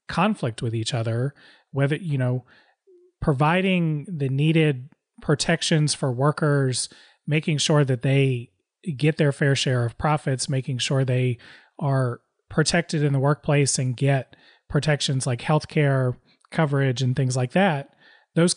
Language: English